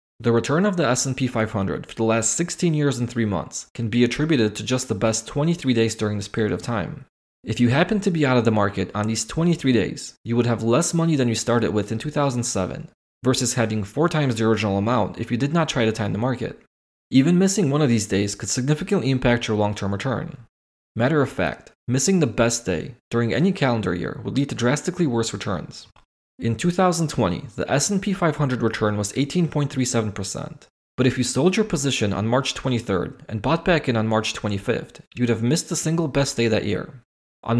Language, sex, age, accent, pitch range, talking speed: English, male, 20-39, Canadian, 110-145 Hz, 210 wpm